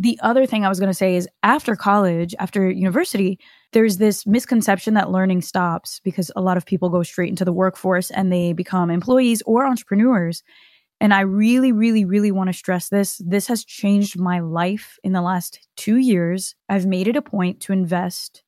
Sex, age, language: female, 20-39, English